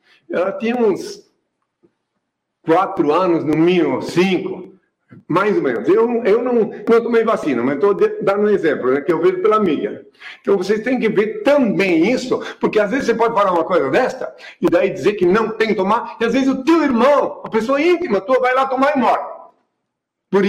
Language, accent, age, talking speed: Portuguese, Brazilian, 50-69, 200 wpm